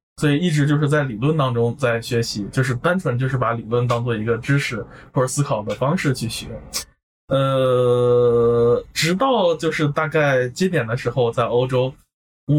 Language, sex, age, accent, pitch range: Chinese, male, 20-39, native, 120-160 Hz